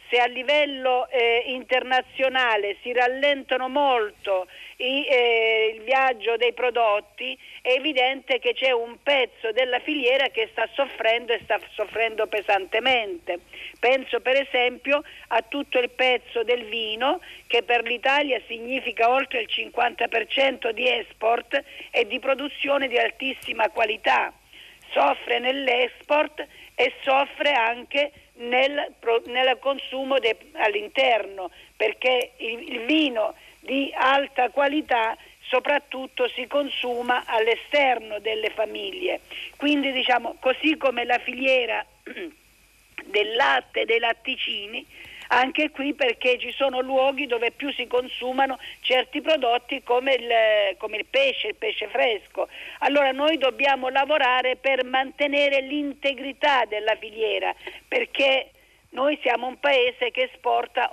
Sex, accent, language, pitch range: female, native, Italian, 240-280 Hz